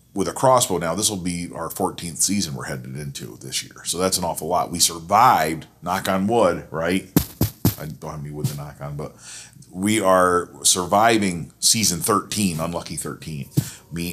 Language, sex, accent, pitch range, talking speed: English, male, American, 75-95 Hz, 185 wpm